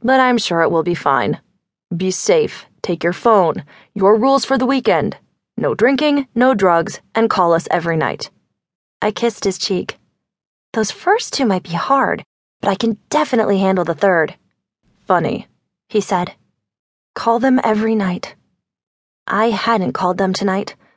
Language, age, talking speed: English, 20-39, 155 wpm